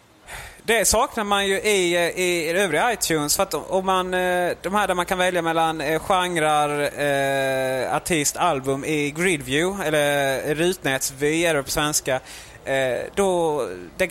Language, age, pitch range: Swedish, 20-39, 135-190 Hz